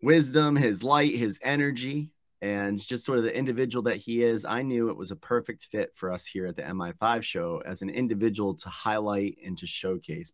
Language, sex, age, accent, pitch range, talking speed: English, male, 30-49, American, 100-145 Hz, 210 wpm